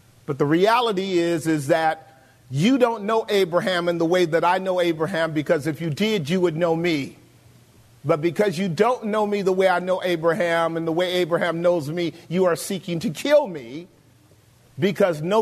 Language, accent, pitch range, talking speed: English, American, 150-210 Hz, 190 wpm